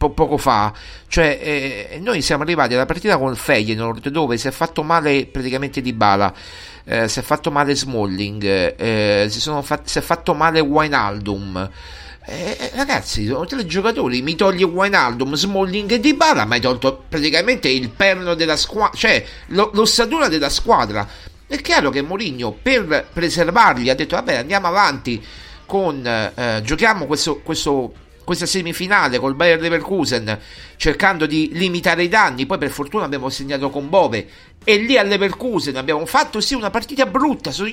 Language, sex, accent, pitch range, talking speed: Italian, male, native, 130-215 Hz, 165 wpm